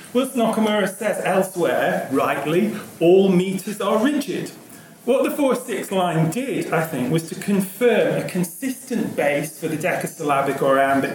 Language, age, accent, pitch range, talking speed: English, 40-59, British, 165-225 Hz, 145 wpm